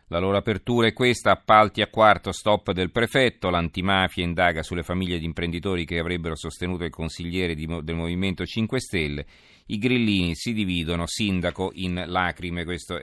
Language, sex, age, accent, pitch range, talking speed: Italian, male, 40-59, native, 85-100 Hz, 155 wpm